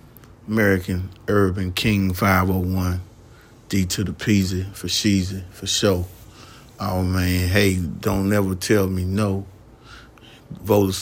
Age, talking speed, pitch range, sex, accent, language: 30-49, 130 wpm, 95-110 Hz, male, American, English